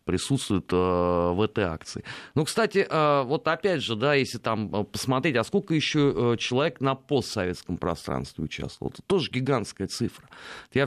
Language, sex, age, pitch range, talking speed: Russian, male, 30-49, 105-135 Hz, 145 wpm